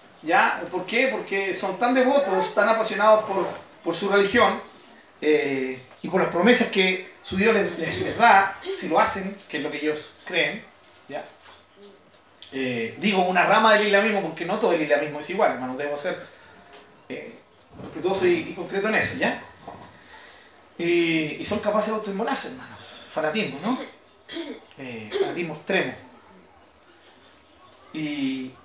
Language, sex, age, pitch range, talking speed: Spanish, male, 30-49, 180-255 Hz, 150 wpm